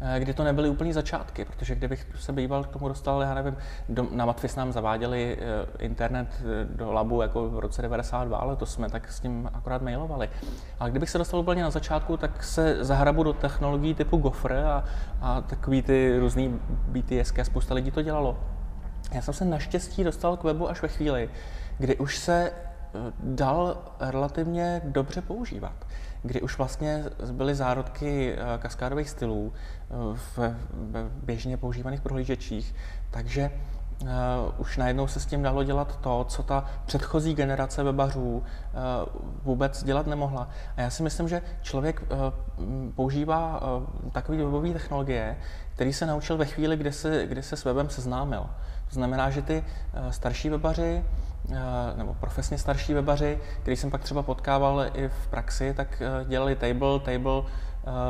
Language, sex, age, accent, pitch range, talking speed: Czech, male, 20-39, native, 120-145 Hz, 160 wpm